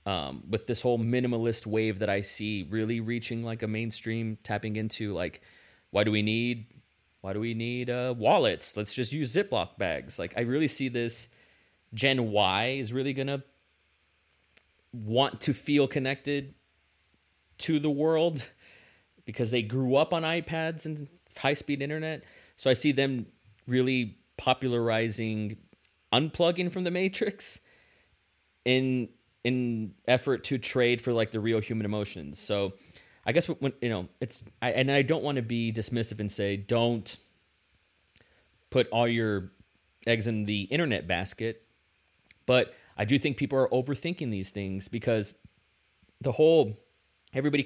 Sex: male